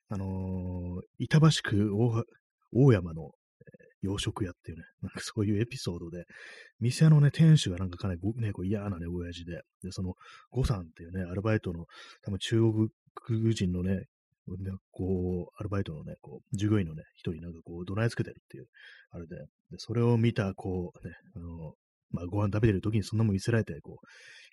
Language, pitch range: Japanese, 90-115 Hz